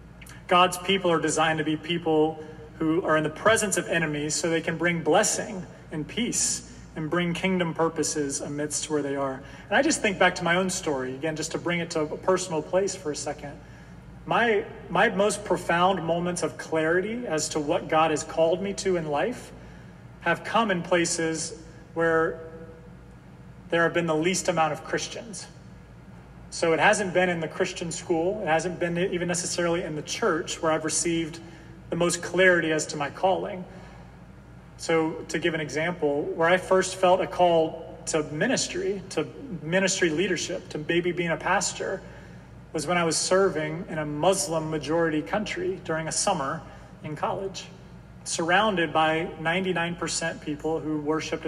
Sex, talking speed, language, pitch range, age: male, 170 wpm, English, 155-180 Hz, 30-49